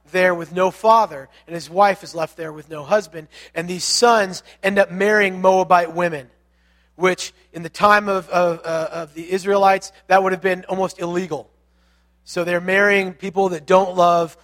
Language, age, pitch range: English, 30-49, 155-195 Hz